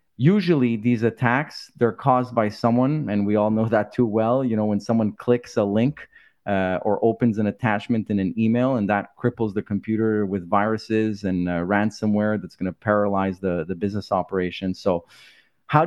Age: 30-49